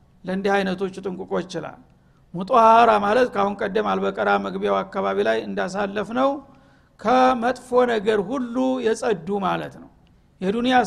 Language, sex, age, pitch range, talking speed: Amharic, male, 60-79, 205-245 Hz, 110 wpm